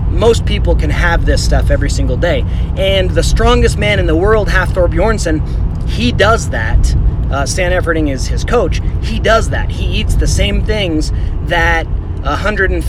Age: 30-49